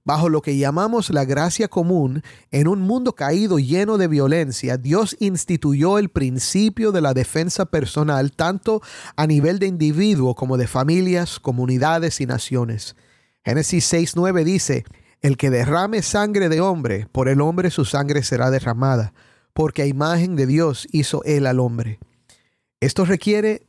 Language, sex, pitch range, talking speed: Spanish, male, 135-175 Hz, 150 wpm